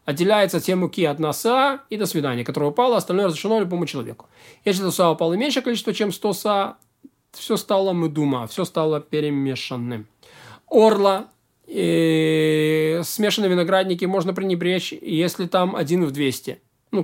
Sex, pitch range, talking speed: male, 155-195 Hz, 140 wpm